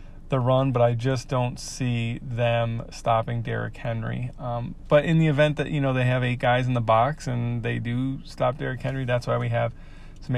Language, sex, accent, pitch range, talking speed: English, male, American, 115-130 Hz, 215 wpm